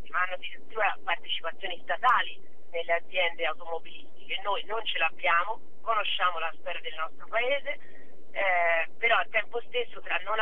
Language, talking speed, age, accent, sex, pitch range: Italian, 145 wpm, 40-59, native, female, 180-265 Hz